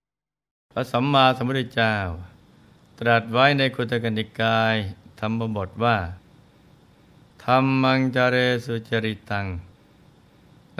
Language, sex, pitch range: Thai, male, 105-125 Hz